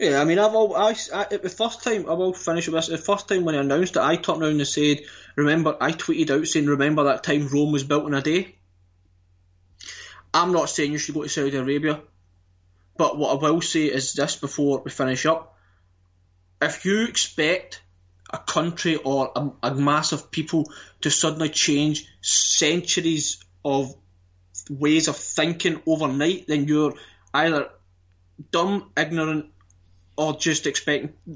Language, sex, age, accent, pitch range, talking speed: English, male, 20-39, British, 130-175 Hz, 170 wpm